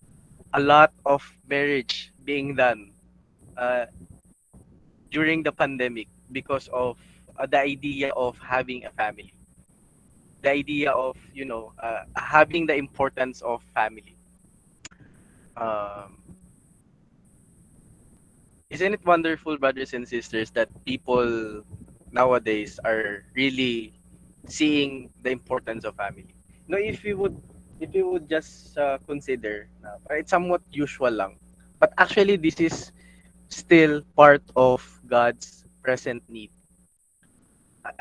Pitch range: 115-150 Hz